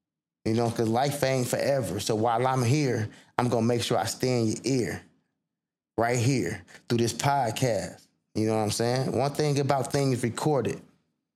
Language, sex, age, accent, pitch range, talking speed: English, male, 20-39, American, 110-125 Hz, 185 wpm